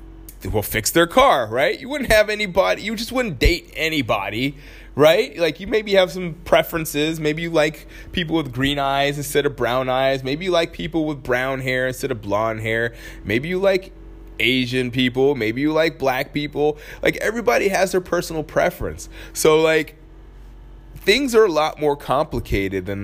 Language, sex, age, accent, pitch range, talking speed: English, male, 20-39, American, 120-170 Hz, 175 wpm